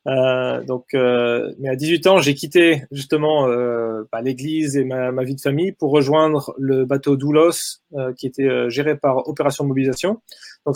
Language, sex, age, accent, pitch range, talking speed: French, male, 20-39, French, 140-175 Hz, 185 wpm